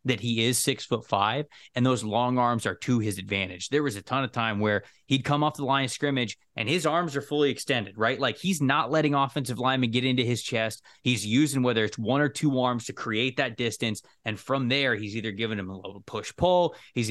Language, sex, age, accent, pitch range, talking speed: English, male, 20-39, American, 105-135 Hz, 240 wpm